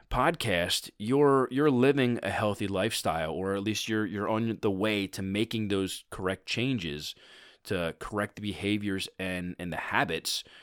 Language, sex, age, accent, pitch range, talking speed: English, male, 20-39, American, 100-130 Hz, 160 wpm